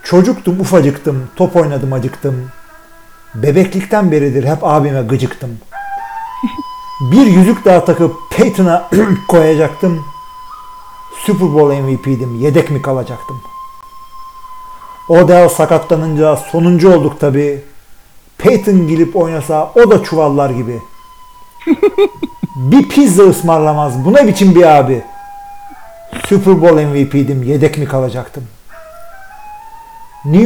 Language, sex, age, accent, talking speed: Turkish, male, 50-69, native, 95 wpm